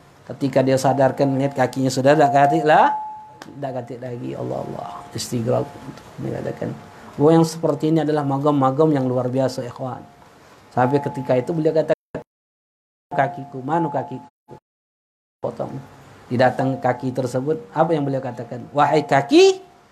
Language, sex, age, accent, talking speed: Indonesian, male, 40-59, native, 130 wpm